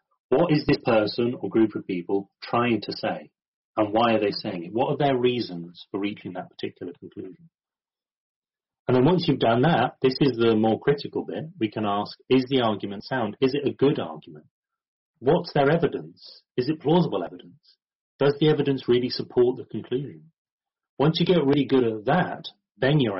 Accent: British